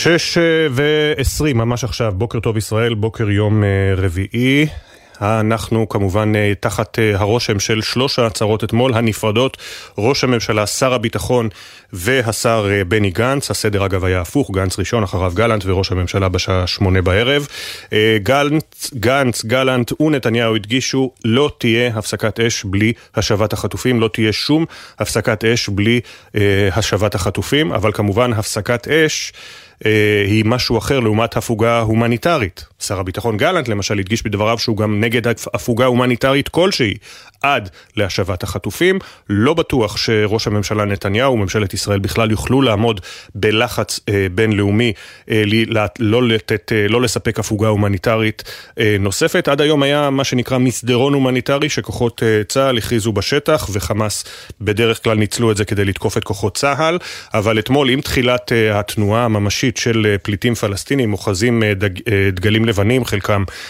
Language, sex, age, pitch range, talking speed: Hebrew, male, 30-49, 105-125 Hz, 140 wpm